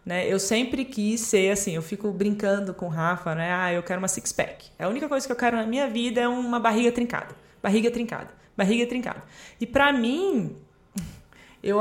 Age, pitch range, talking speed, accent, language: 20-39, 195-270 Hz, 200 wpm, Brazilian, Portuguese